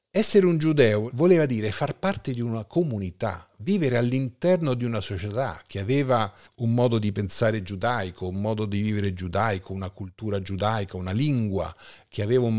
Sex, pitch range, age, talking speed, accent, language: male, 100-135 Hz, 40-59, 165 wpm, native, Italian